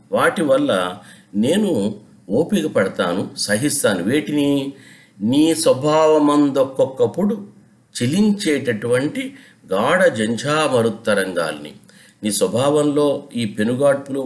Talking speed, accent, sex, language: 65 wpm, native, male, Telugu